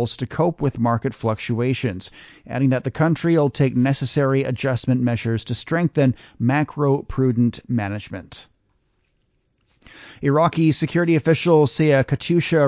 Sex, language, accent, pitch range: male, English, American, 120-145 Hz